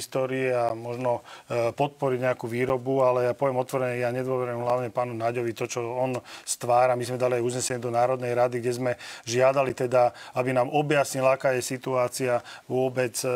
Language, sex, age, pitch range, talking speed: Slovak, male, 40-59, 125-135 Hz, 165 wpm